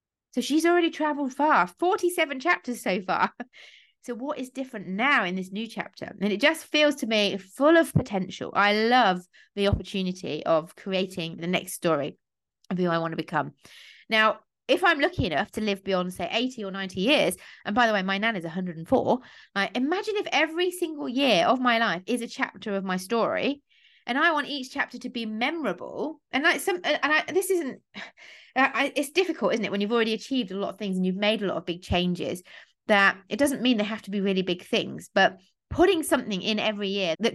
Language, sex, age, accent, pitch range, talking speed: English, female, 30-49, British, 195-285 Hz, 205 wpm